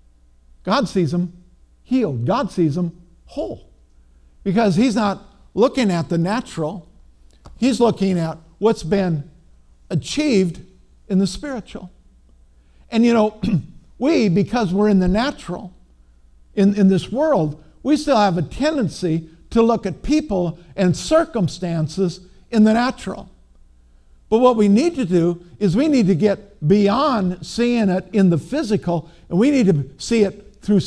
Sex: male